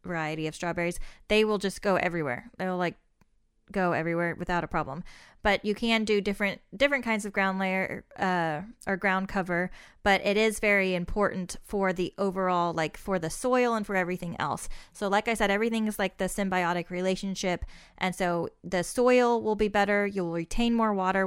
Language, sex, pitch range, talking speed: English, female, 180-205 Hz, 185 wpm